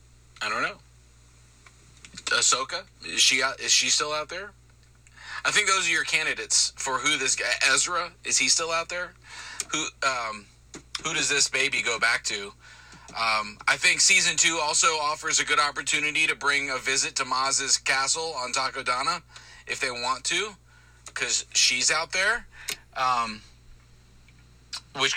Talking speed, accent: 155 wpm, American